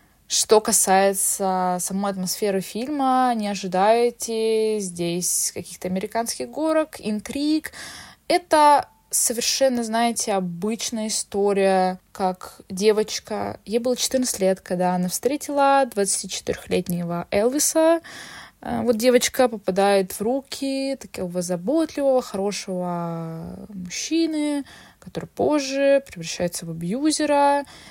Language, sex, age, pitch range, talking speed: Russian, female, 20-39, 185-245 Hz, 90 wpm